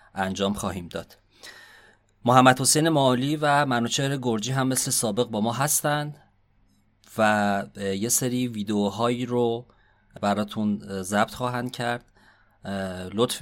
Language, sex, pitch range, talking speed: Persian, male, 100-125 Hz, 105 wpm